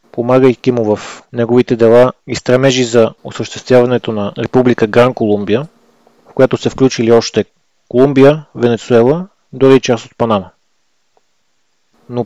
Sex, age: male, 30-49